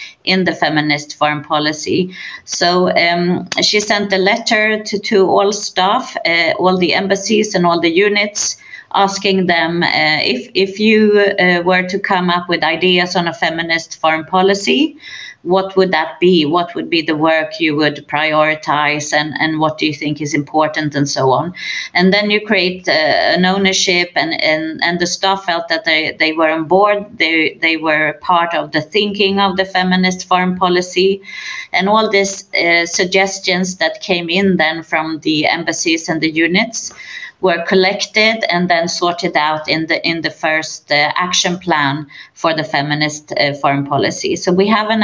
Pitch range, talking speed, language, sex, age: 160-195 Hz, 180 wpm, Slovak, female, 30-49